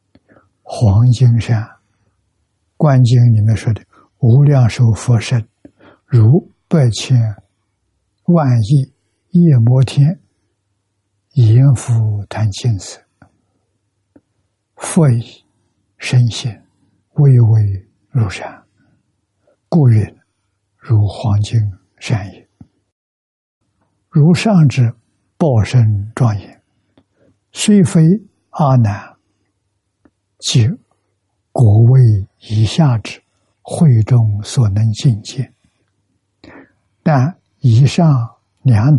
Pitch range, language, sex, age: 100-130 Hz, Chinese, male, 60-79